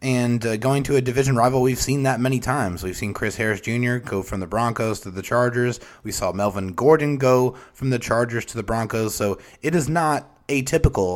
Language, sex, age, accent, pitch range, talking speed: English, male, 30-49, American, 105-135 Hz, 215 wpm